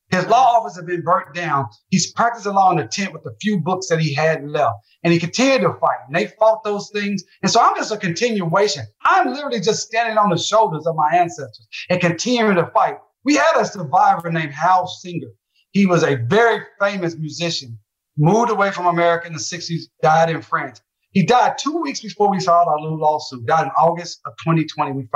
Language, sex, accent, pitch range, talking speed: English, male, American, 150-195 Hz, 210 wpm